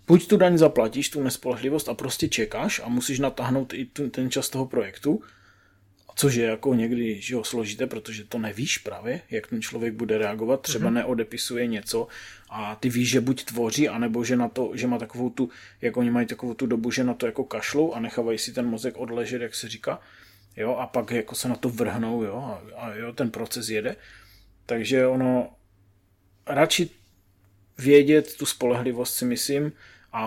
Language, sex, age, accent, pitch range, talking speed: Czech, male, 20-39, native, 115-130 Hz, 190 wpm